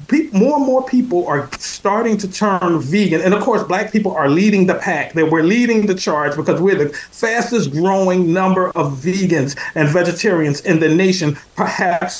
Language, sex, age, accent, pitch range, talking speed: English, male, 40-59, American, 170-220 Hz, 185 wpm